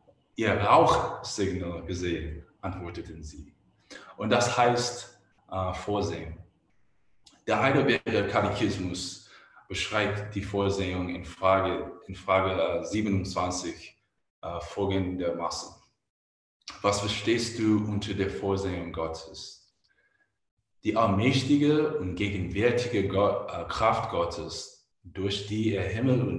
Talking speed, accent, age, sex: 100 wpm, German, 20-39, male